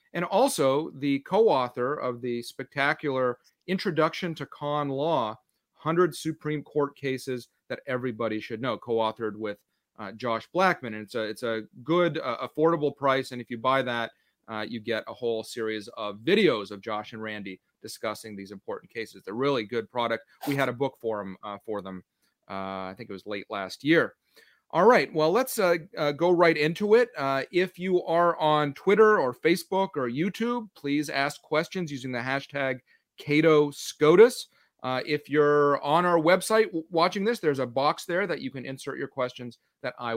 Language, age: English, 30-49